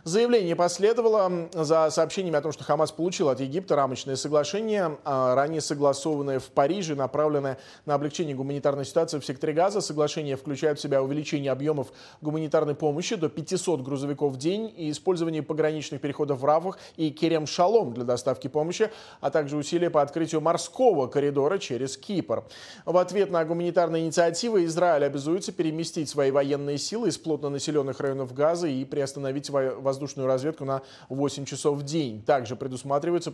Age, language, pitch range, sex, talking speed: 20-39, Russian, 135-170 Hz, male, 155 wpm